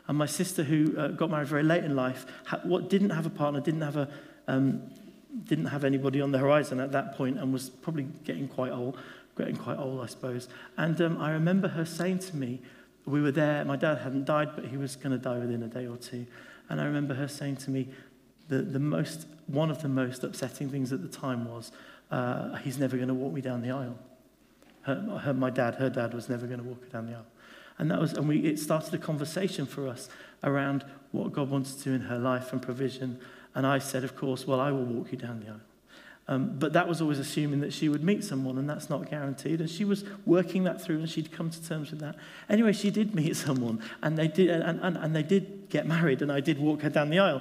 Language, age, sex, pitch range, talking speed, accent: English, 40-59, male, 130-165 Hz, 250 wpm, British